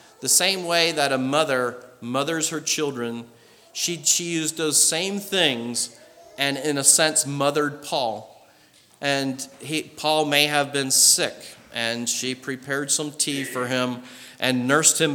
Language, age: English, 40-59